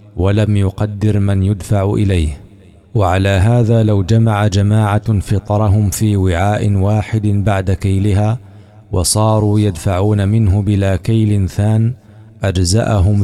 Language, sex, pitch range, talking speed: Arabic, male, 100-105 Hz, 105 wpm